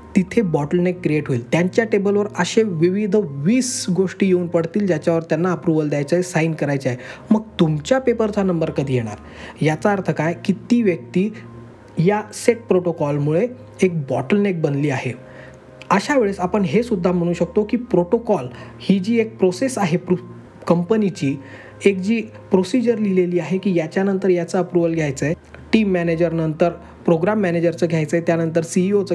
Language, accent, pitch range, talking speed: Marathi, native, 160-205 Hz, 150 wpm